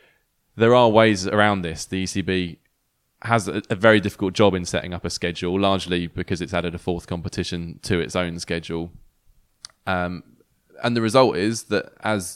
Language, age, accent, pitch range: English, 20-39, British, 90-110 Hz